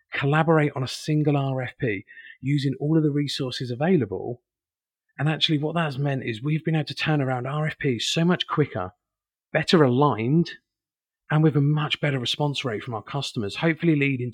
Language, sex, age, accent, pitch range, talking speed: English, male, 30-49, British, 125-150 Hz, 170 wpm